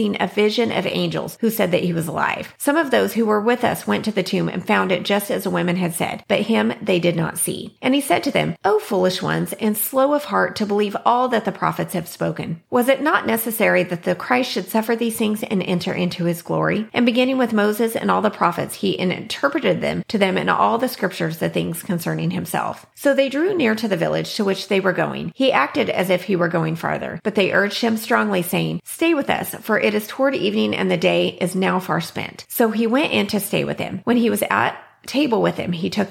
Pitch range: 180-225 Hz